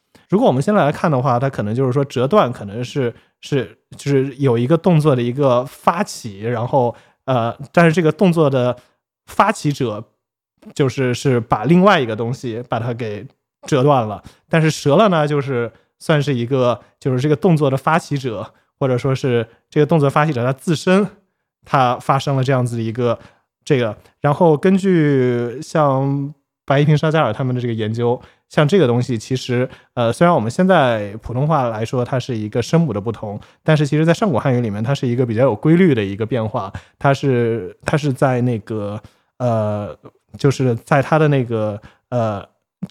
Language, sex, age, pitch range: Chinese, male, 20-39, 120-150 Hz